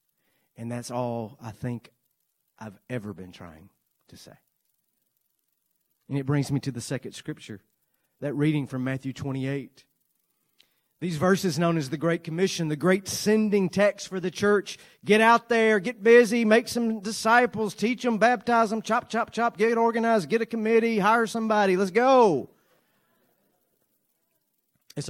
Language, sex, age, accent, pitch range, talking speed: English, male, 40-59, American, 125-205 Hz, 150 wpm